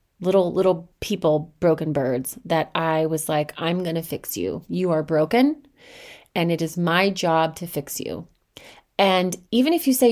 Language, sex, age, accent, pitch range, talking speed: English, female, 30-49, American, 165-260 Hz, 180 wpm